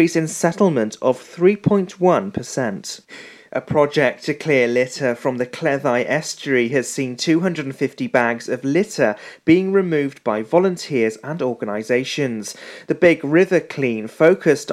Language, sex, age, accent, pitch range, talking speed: English, male, 30-49, British, 125-165 Hz, 125 wpm